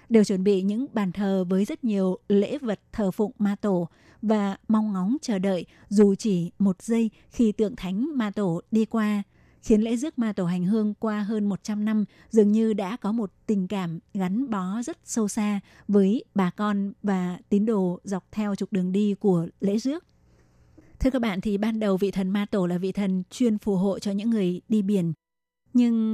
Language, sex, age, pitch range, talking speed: Vietnamese, female, 20-39, 195-220 Hz, 205 wpm